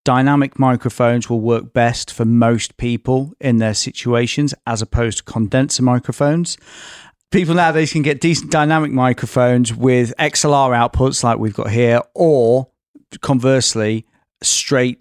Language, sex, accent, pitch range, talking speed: English, male, British, 105-130 Hz, 130 wpm